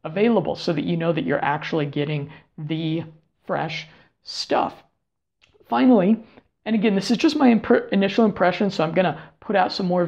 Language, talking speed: English, 175 wpm